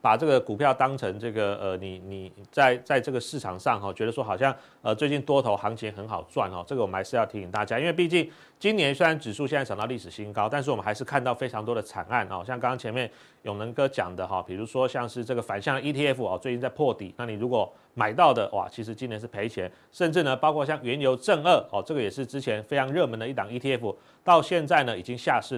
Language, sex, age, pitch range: Chinese, male, 30-49, 110-145 Hz